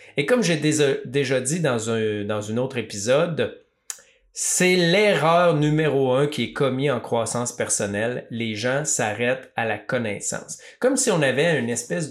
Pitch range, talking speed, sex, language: 115-165 Hz, 160 wpm, male, French